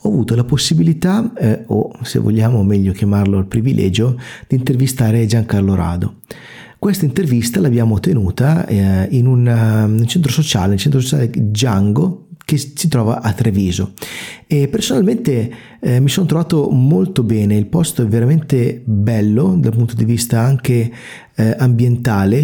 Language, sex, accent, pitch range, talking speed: Italian, male, native, 110-140 Hz, 145 wpm